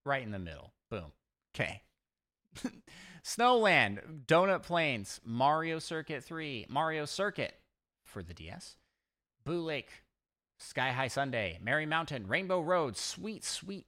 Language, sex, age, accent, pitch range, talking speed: English, male, 30-49, American, 95-135 Hz, 120 wpm